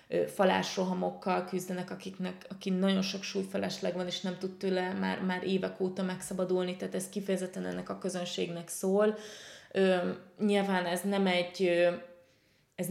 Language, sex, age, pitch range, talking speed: Hungarian, female, 20-39, 175-195 Hz, 140 wpm